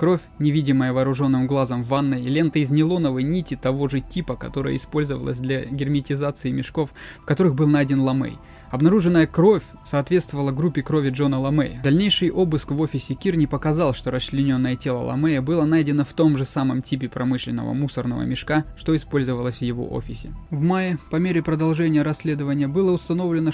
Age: 20-39